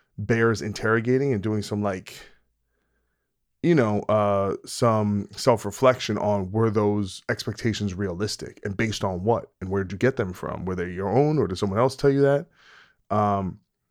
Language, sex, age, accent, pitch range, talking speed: English, male, 20-39, American, 105-125 Hz, 170 wpm